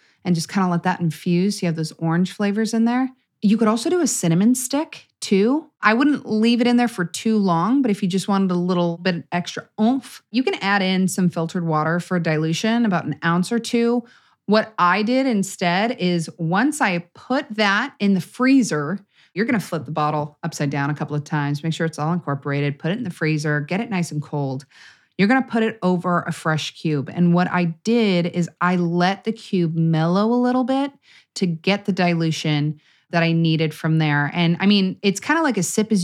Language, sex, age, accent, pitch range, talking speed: English, female, 30-49, American, 160-205 Hz, 225 wpm